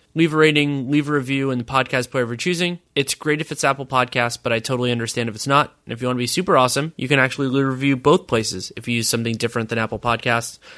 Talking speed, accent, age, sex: 265 wpm, American, 20-39, male